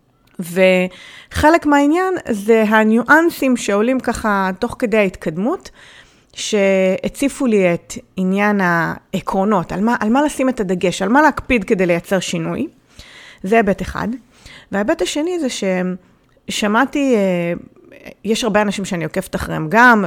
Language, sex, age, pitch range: English, female, 30-49, 185-245 Hz